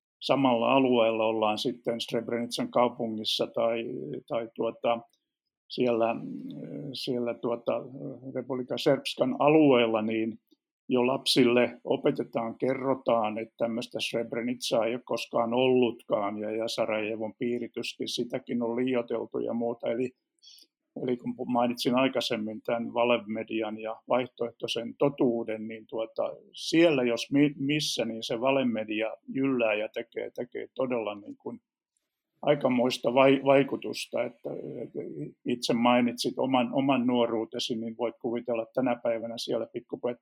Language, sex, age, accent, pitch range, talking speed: Finnish, male, 50-69, native, 115-135 Hz, 115 wpm